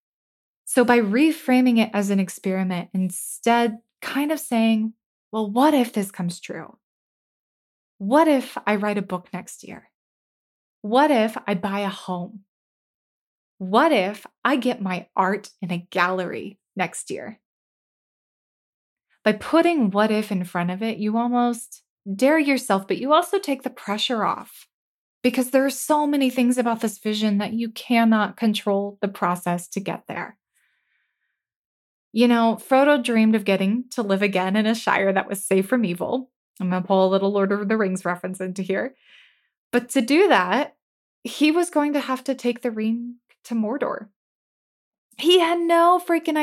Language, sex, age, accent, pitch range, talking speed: English, female, 20-39, American, 200-260 Hz, 165 wpm